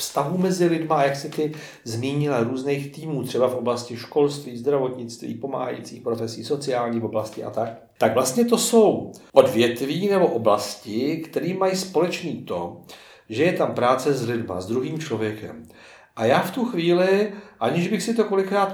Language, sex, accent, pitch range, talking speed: Czech, male, native, 120-175 Hz, 160 wpm